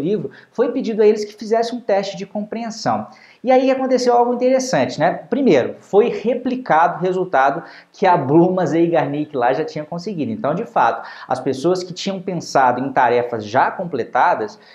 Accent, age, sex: Brazilian, 20-39, male